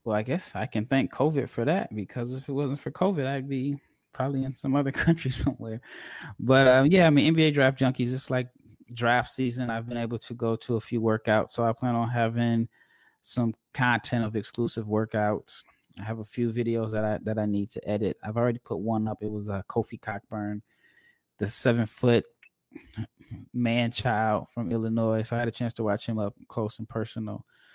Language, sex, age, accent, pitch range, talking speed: English, male, 20-39, American, 110-125 Hz, 205 wpm